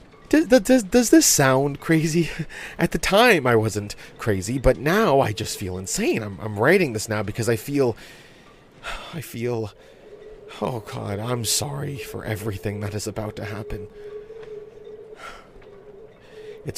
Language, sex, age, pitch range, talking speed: English, male, 30-49, 100-130 Hz, 145 wpm